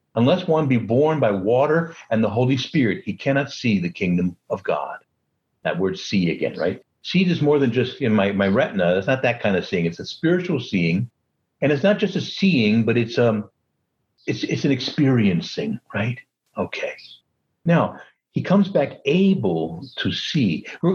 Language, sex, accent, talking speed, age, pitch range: English, male, American, 185 wpm, 60-79, 105-165 Hz